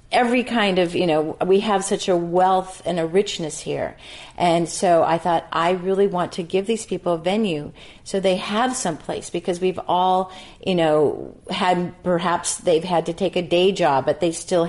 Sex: female